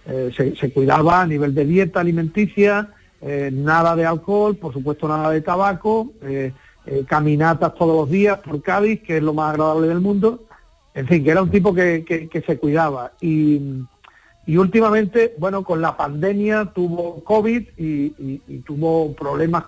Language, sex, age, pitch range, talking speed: Spanish, male, 40-59, 150-180 Hz, 170 wpm